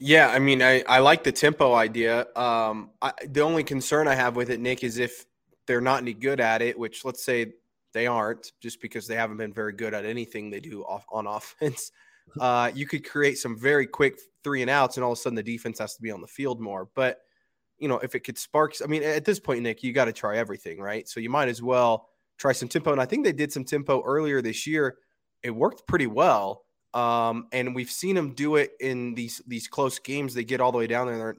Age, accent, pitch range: 20-39, American, 115-135 Hz